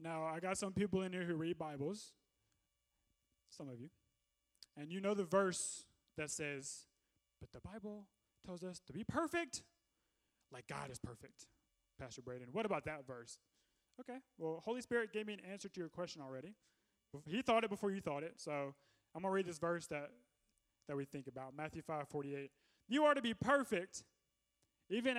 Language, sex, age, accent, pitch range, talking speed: English, male, 20-39, American, 135-200 Hz, 185 wpm